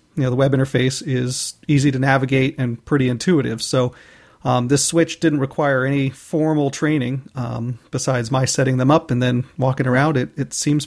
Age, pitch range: 40-59, 130-150 Hz